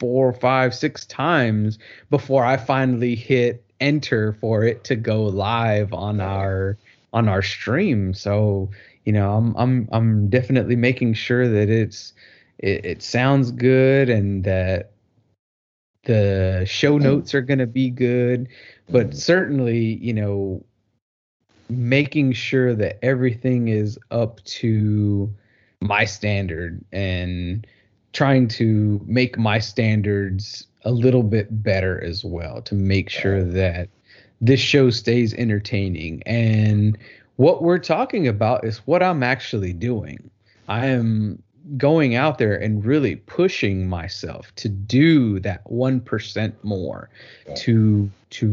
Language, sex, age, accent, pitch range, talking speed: English, male, 30-49, American, 100-125 Hz, 125 wpm